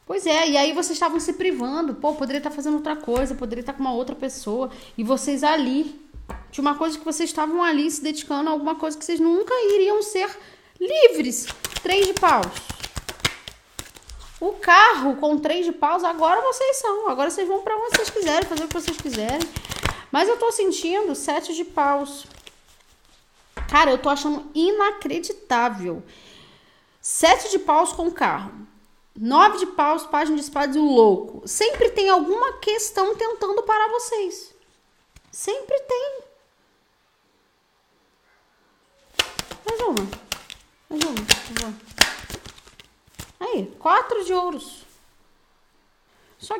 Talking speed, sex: 145 wpm, female